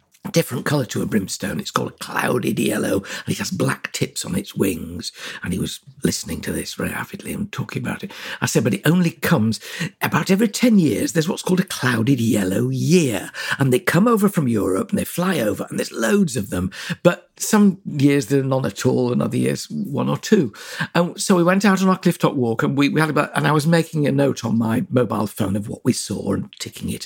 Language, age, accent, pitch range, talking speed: English, 60-79, British, 115-185 Hz, 235 wpm